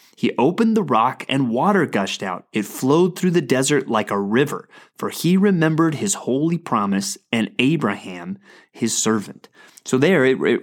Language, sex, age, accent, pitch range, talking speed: English, male, 30-49, American, 125-170 Hz, 170 wpm